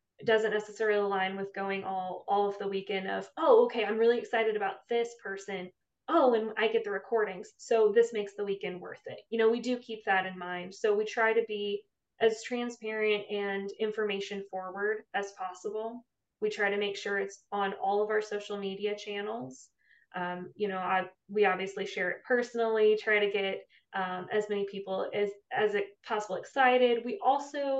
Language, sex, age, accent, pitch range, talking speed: English, female, 20-39, American, 200-235 Hz, 190 wpm